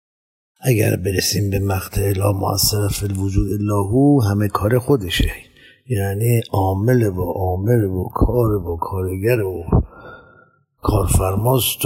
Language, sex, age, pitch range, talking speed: Persian, male, 50-69, 95-115 Hz, 105 wpm